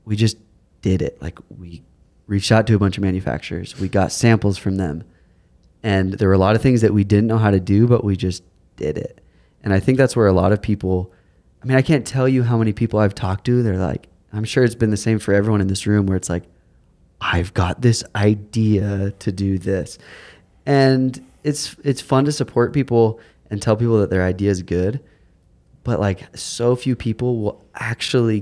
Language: English